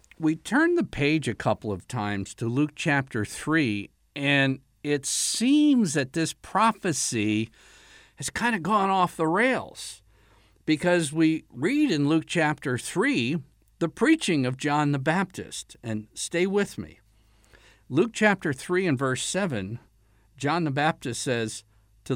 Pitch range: 115-175 Hz